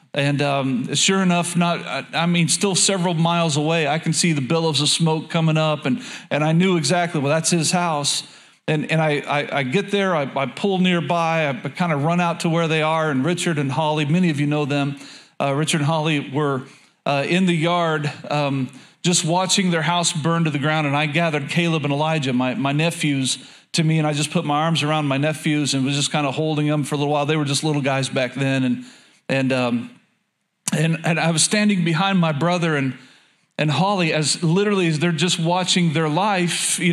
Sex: male